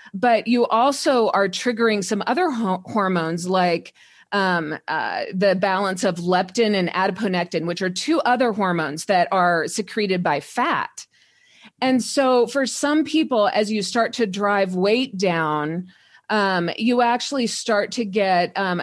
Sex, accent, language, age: female, American, English, 40-59